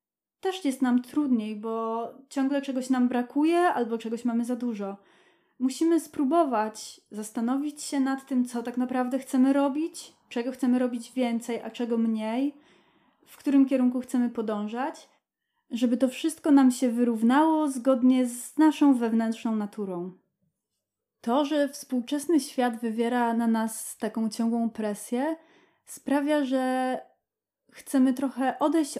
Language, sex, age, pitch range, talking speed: Polish, female, 20-39, 230-275 Hz, 130 wpm